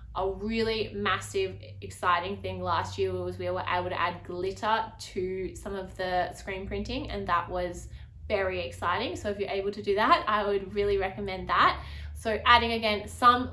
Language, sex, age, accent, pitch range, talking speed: English, female, 20-39, Australian, 175-210 Hz, 180 wpm